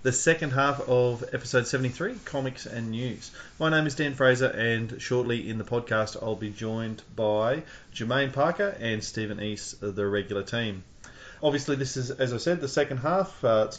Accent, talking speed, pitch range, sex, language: Australian, 185 wpm, 110-135 Hz, male, English